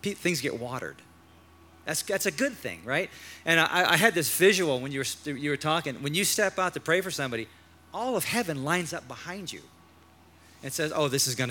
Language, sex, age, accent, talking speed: English, male, 40-59, American, 220 wpm